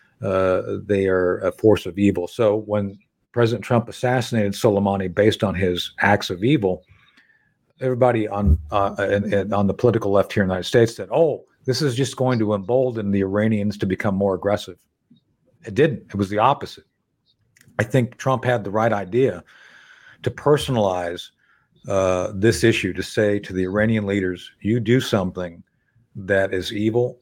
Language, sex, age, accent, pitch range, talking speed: English, male, 50-69, American, 100-125 Hz, 170 wpm